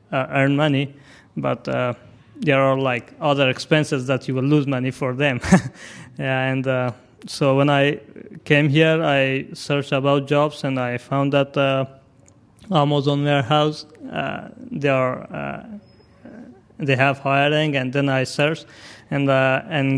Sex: male